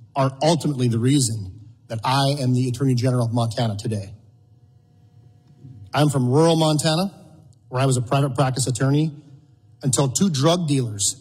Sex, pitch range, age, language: male, 120-145 Hz, 40-59, English